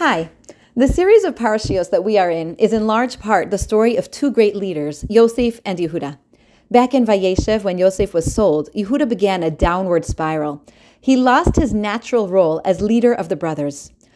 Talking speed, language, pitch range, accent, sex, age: 185 wpm, English, 165-230 Hz, American, female, 40-59